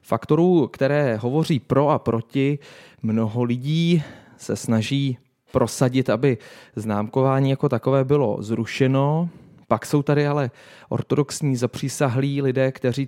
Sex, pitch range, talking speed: male, 115-145 Hz, 115 wpm